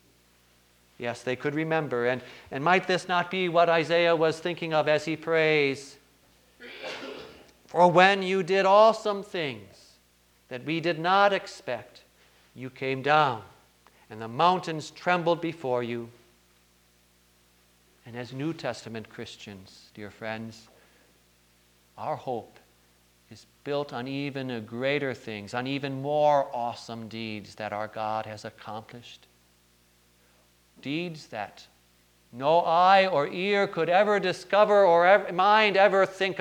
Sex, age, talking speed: male, 50-69, 125 wpm